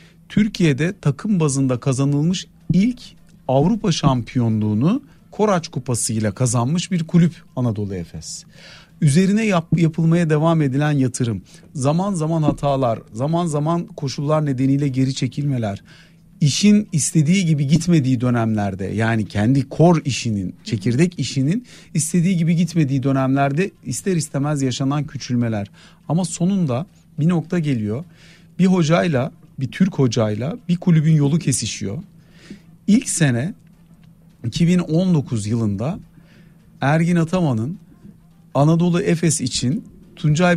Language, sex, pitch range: Turkish, male, 130-175 Hz